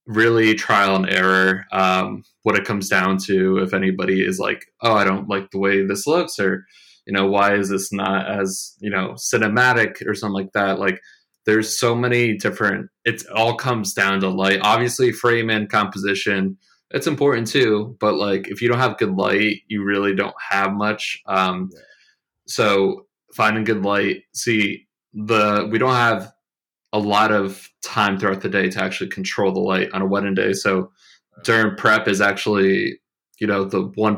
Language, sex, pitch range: English, male, 95-110 Hz